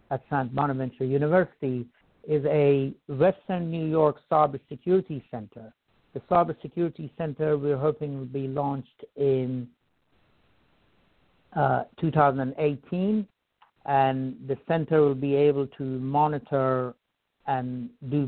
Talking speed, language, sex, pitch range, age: 110 wpm, English, male, 130-150 Hz, 60-79